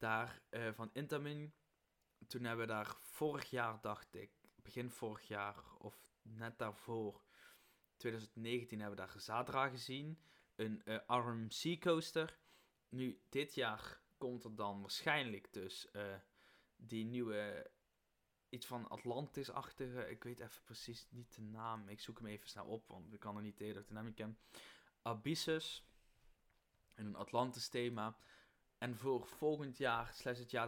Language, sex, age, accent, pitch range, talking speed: Dutch, male, 20-39, Dutch, 110-130 Hz, 145 wpm